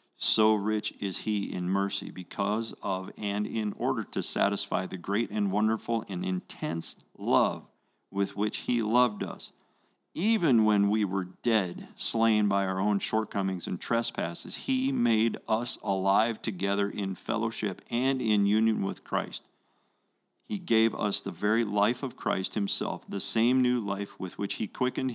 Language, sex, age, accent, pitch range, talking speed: English, male, 40-59, American, 95-115 Hz, 155 wpm